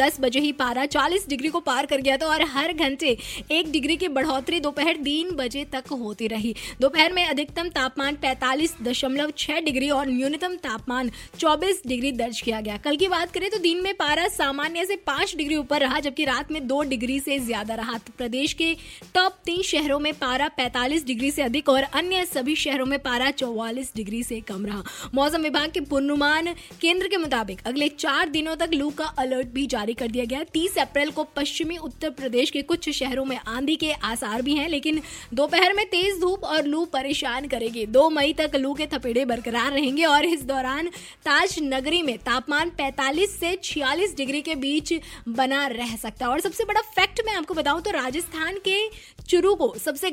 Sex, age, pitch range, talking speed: female, 20-39, 265-330 Hz, 190 wpm